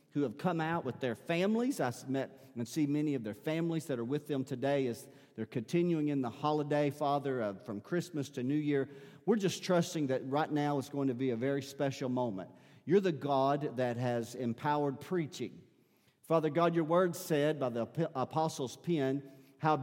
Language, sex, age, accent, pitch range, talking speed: English, male, 50-69, American, 120-160 Hz, 190 wpm